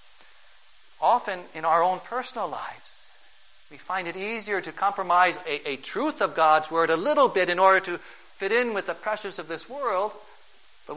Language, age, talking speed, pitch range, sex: English, 40-59, 180 wpm, 140-175 Hz, male